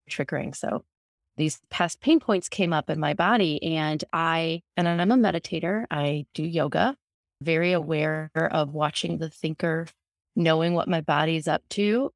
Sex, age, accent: female, 30-49, American